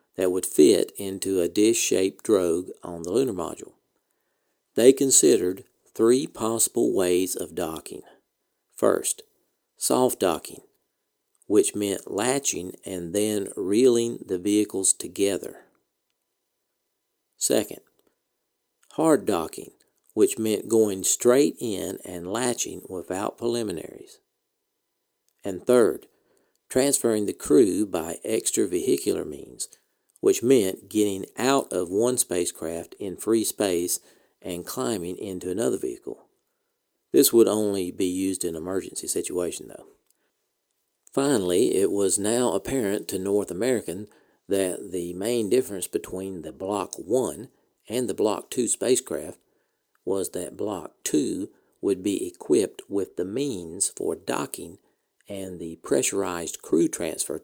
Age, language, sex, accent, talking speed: 50-69, English, male, American, 115 wpm